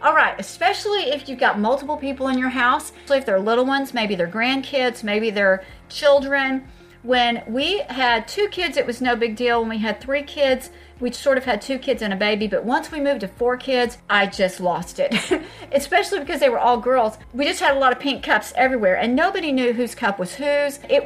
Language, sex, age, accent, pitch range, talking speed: English, female, 40-59, American, 215-280 Hz, 230 wpm